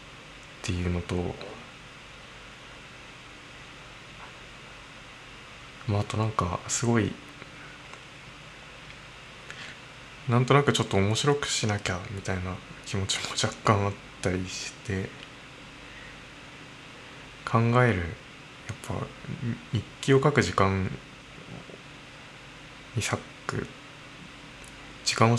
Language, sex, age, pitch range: Japanese, male, 20-39, 110-140 Hz